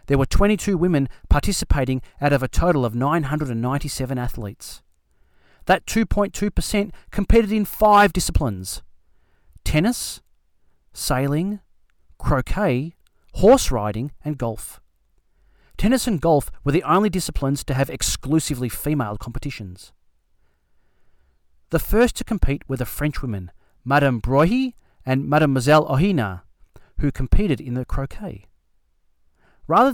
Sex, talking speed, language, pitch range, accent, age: male, 110 wpm, Italian, 100-165 Hz, Australian, 30-49